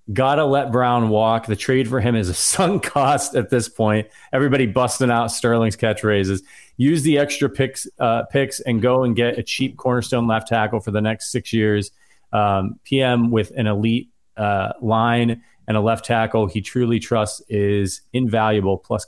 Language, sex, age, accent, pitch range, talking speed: English, male, 30-49, American, 110-135 Hz, 185 wpm